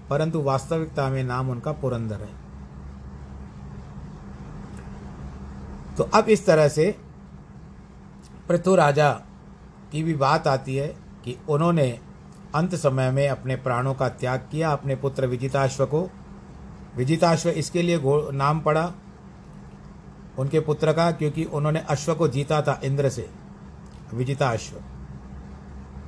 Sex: male